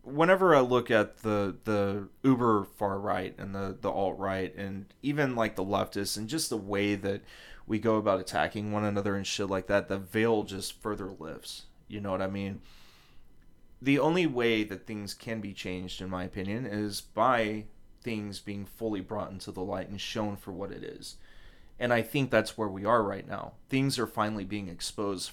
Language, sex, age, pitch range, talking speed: English, male, 30-49, 95-110 Hz, 195 wpm